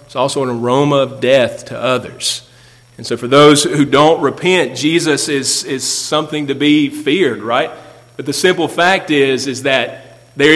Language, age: English, 40-59